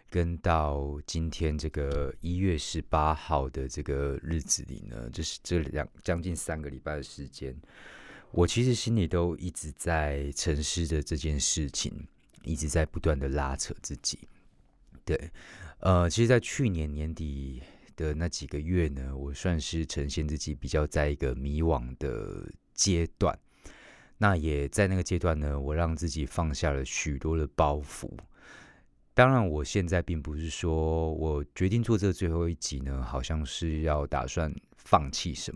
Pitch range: 70-85 Hz